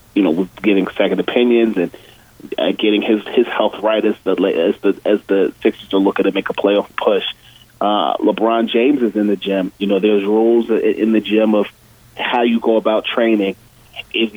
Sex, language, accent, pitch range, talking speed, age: male, English, American, 105-120 Hz, 200 wpm, 30-49